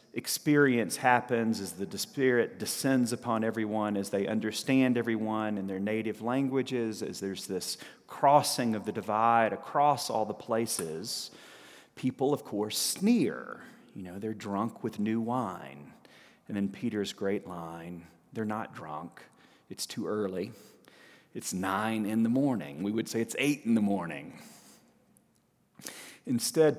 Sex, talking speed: male, 140 wpm